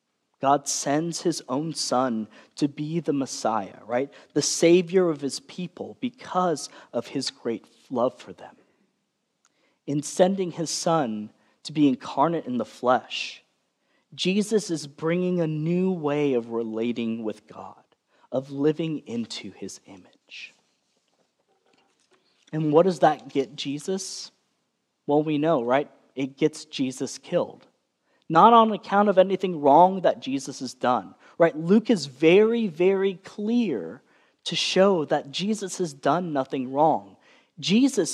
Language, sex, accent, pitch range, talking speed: English, male, American, 145-200 Hz, 135 wpm